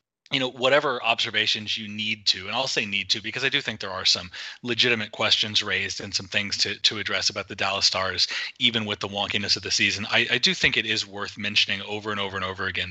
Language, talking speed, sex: English, 245 wpm, male